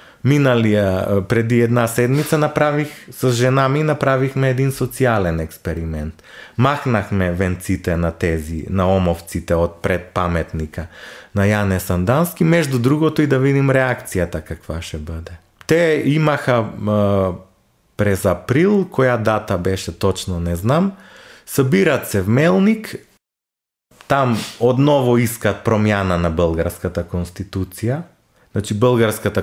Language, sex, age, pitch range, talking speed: Bulgarian, male, 30-49, 95-130 Hz, 110 wpm